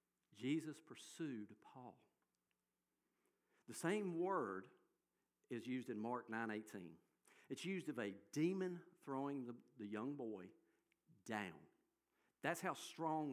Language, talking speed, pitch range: English, 115 wpm, 110-165 Hz